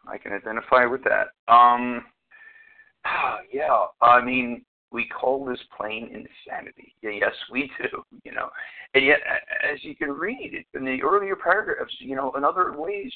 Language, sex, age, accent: English, male, 50-69, American